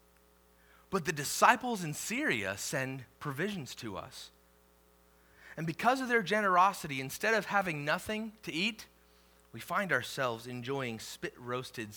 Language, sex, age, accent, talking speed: English, male, 30-49, American, 125 wpm